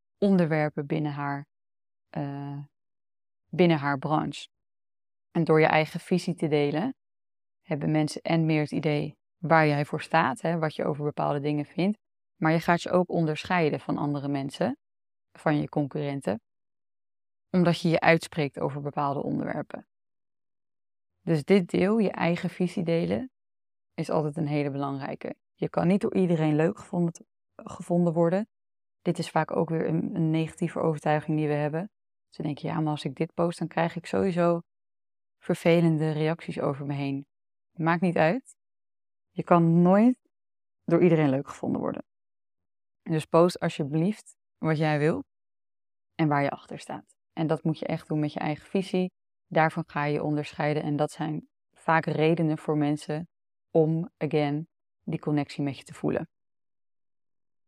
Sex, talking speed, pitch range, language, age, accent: female, 155 wpm, 145-170 Hz, Dutch, 20-39, Dutch